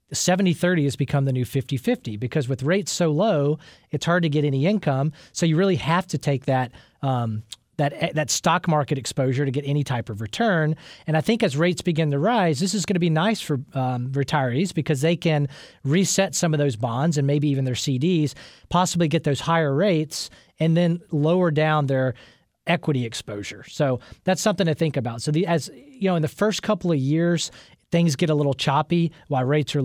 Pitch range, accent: 135-170 Hz, American